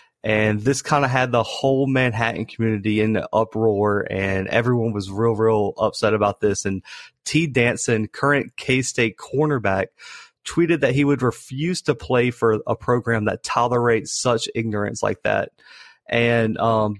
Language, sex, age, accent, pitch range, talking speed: English, male, 30-49, American, 110-135 Hz, 155 wpm